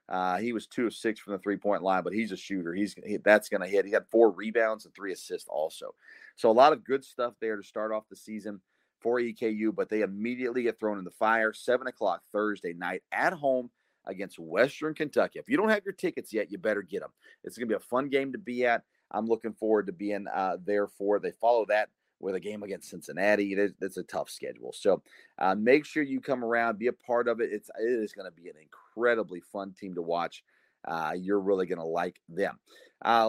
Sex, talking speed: male, 245 wpm